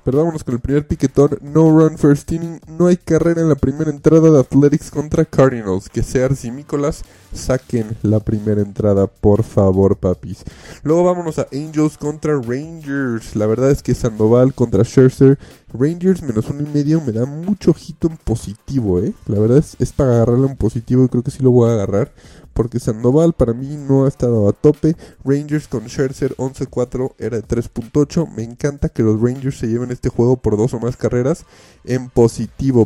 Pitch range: 115-150 Hz